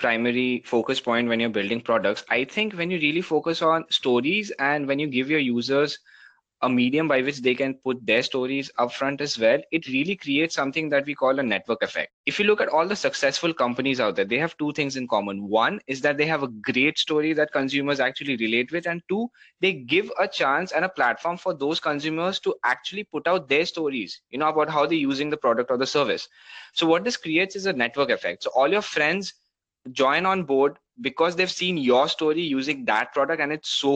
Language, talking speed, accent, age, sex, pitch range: English, 225 wpm, Indian, 20-39, male, 130-170 Hz